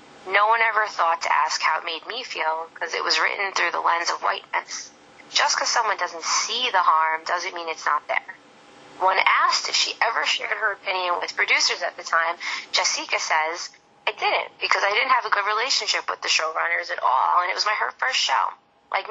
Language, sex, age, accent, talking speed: English, female, 20-39, American, 215 wpm